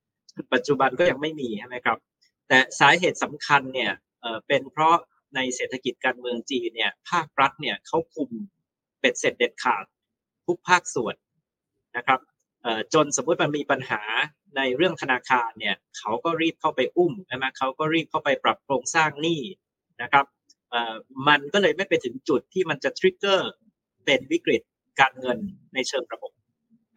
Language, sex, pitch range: Thai, male, 130-170 Hz